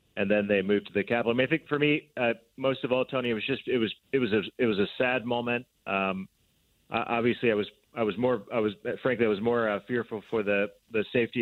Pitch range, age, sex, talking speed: 105-125 Hz, 30-49, male, 270 wpm